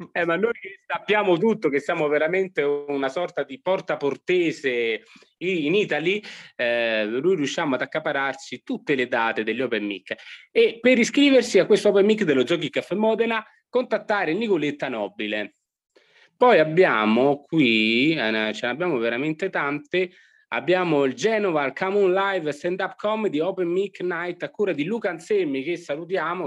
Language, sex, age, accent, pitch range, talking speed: Italian, male, 30-49, native, 125-190 Hz, 155 wpm